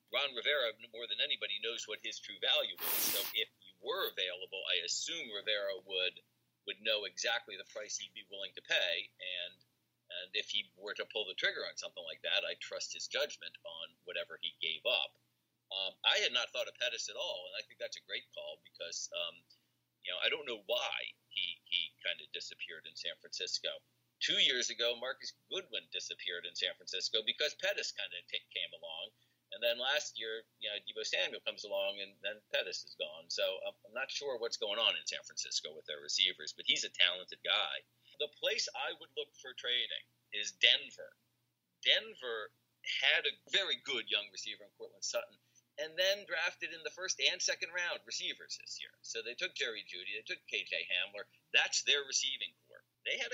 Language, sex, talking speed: English, male, 200 wpm